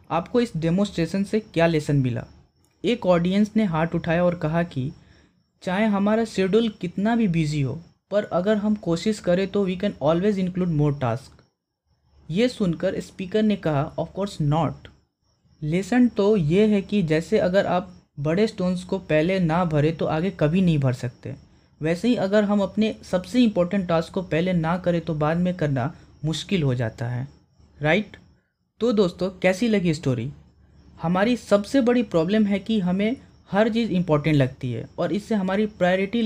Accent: native